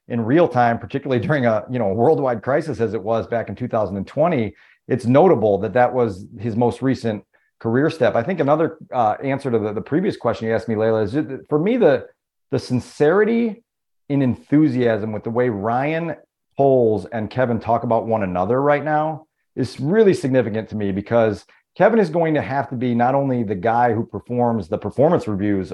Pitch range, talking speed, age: 115-140 Hz, 195 wpm, 40-59